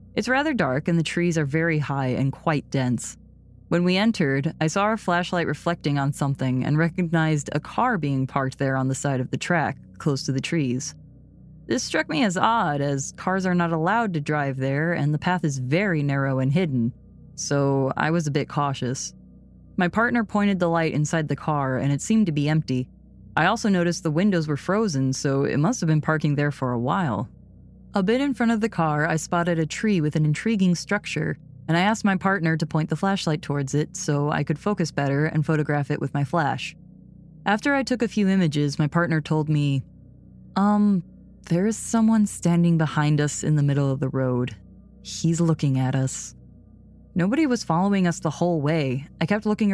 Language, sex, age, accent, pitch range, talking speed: English, female, 20-39, American, 140-175 Hz, 205 wpm